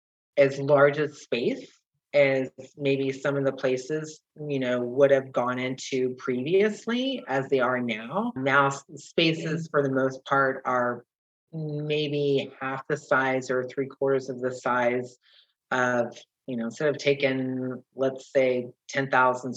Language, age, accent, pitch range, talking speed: English, 30-49, American, 125-145 Hz, 145 wpm